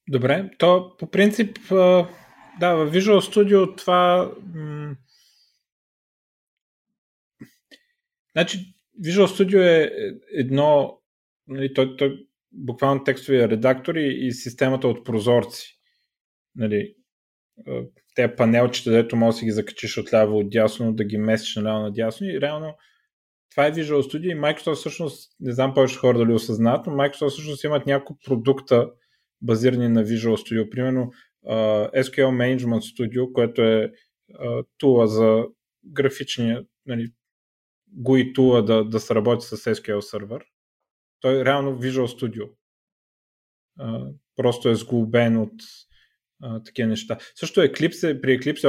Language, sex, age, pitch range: Bulgarian, male, 30-49, 115-150 Hz